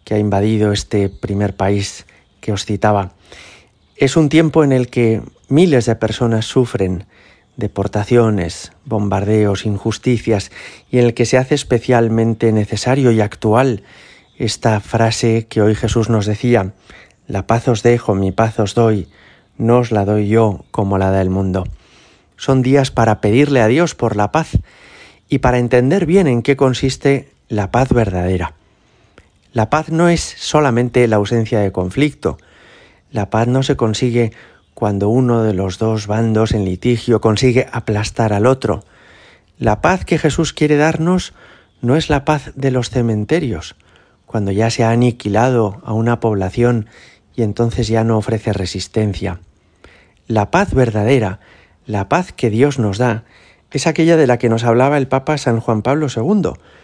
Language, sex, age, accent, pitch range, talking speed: Spanish, male, 30-49, Spanish, 105-130 Hz, 160 wpm